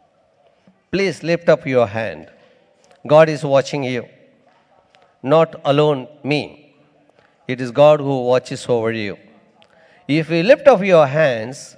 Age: 50-69